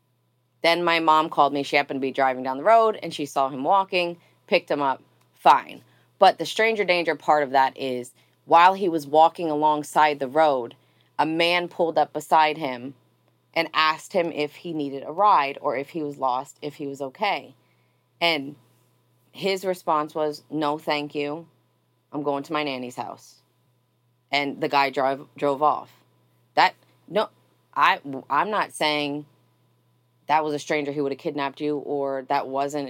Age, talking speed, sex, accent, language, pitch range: 20-39, 175 wpm, female, American, English, 130-160 Hz